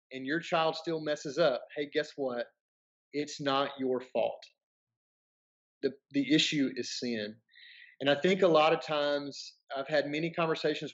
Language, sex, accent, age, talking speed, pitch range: English, male, American, 30-49, 160 wpm, 130-155 Hz